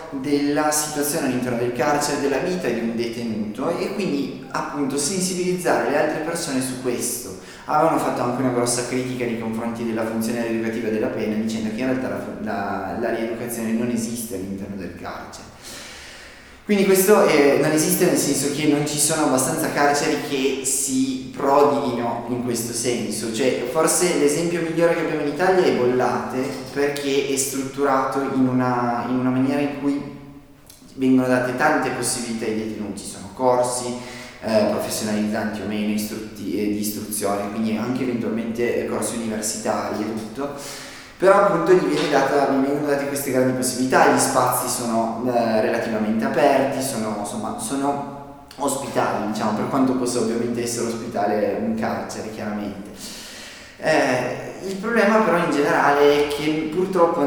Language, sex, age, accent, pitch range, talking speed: Italian, male, 20-39, native, 115-145 Hz, 150 wpm